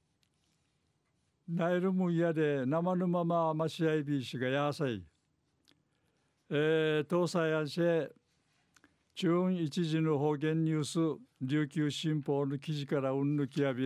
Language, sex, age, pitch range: Japanese, male, 60-79, 145-170 Hz